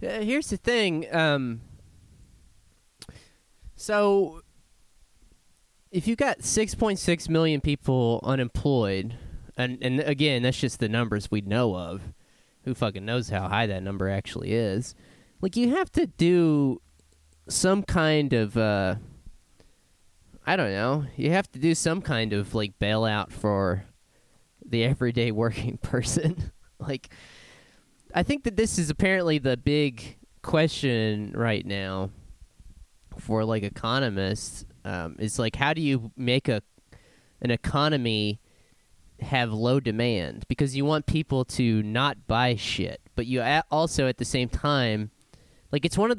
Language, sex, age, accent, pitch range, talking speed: English, male, 20-39, American, 105-150 Hz, 135 wpm